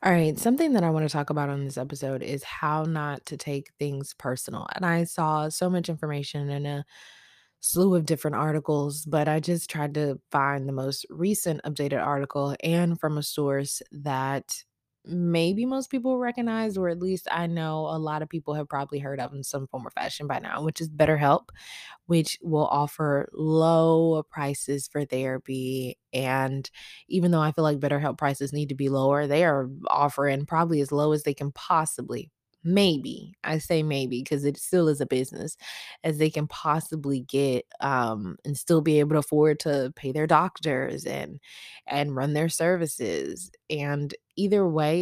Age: 20-39